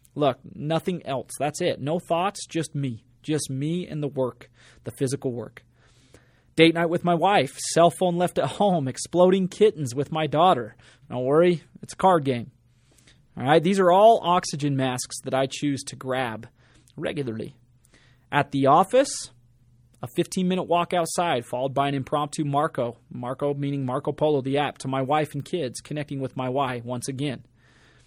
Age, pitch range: 30-49, 125-160 Hz